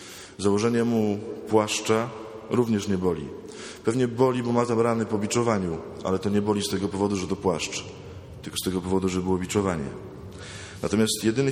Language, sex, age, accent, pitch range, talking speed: Polish, male, 20-39, native, 95-110 Hz, 165 wpm